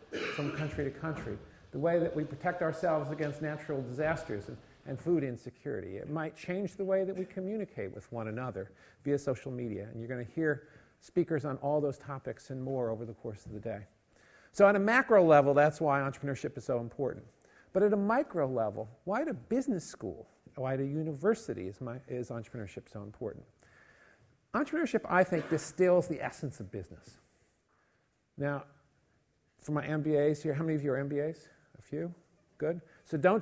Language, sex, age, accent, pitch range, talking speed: English, male, 50-69, American, 130-175 Hz, 185 wpm